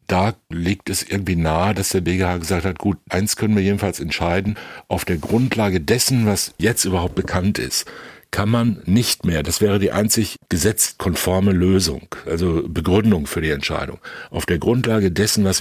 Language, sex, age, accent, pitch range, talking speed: German, male, 60-79, German, 85-100 Hz, 175 wpm